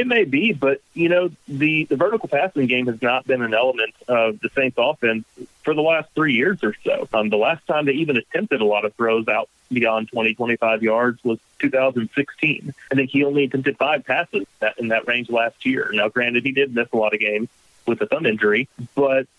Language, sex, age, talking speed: English, male, 40-59, 220 wpm